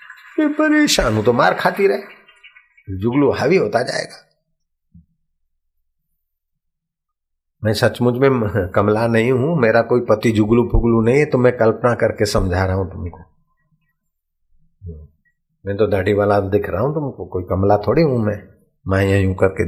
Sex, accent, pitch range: male, native, 95-115 Hz